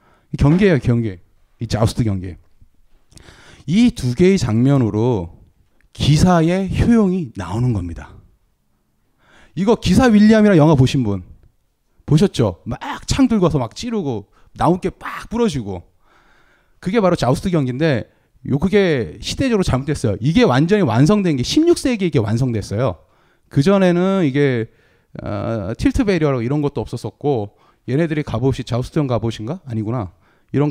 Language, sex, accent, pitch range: Korean, male, native, 105-170 Hz